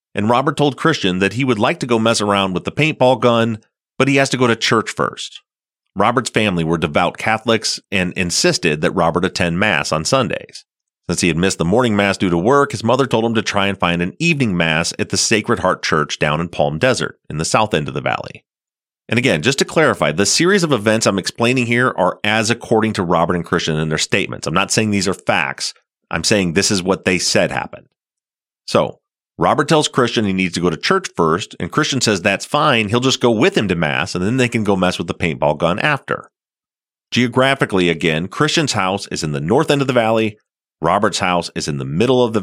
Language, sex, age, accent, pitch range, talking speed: English, male, 30-49, American, 90-125 Hz, 230 wpm